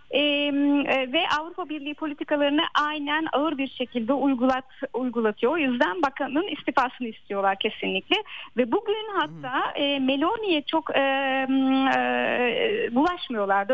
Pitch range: 235-295 Hz